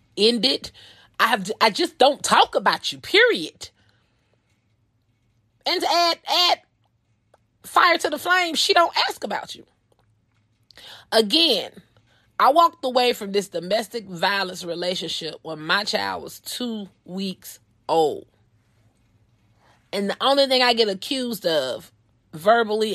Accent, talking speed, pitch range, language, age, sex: American, 125 wpm, 155-245 Hz, English, 30-49, female